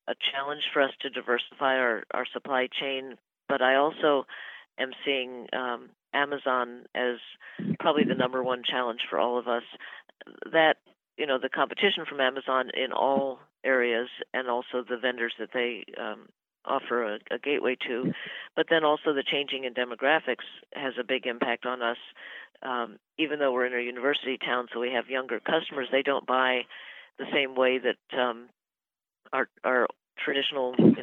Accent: American